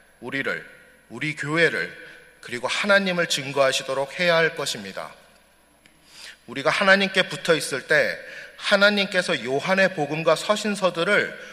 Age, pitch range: 30-49, 145-190 Hz